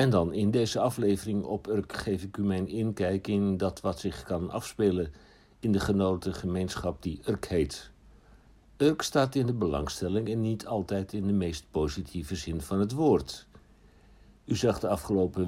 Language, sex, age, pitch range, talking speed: Dutch, male, 60-79, 90-110 Hz, 170 wpm